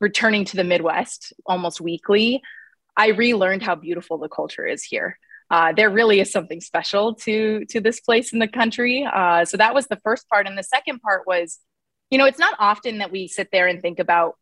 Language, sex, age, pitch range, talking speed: English, female, 20-39, 170-215 Hz, 210 wpm